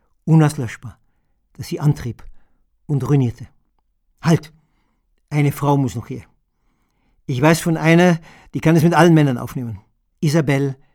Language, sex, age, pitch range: German, male, 50-69, 135-160 Hz